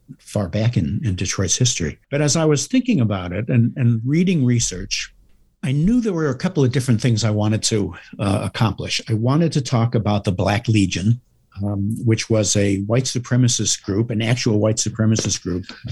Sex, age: male, 60-79